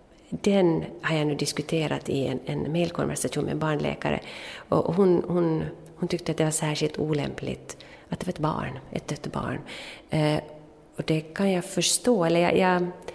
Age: 30-49